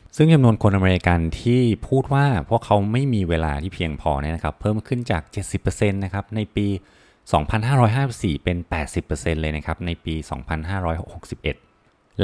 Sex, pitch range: male, 80-105 Hz